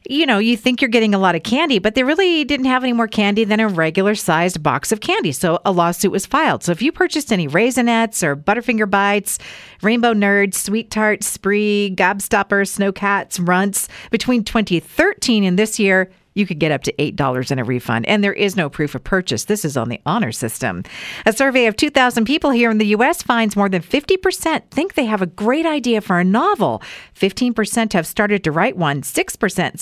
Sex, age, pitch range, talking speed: female, 50-69, 185-255 Hz, 210 wpm